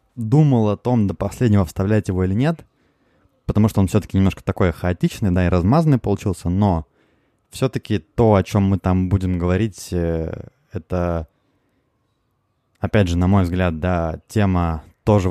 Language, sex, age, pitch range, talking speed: Russian, male, 20-39, 85-110 Hz, 150 wpm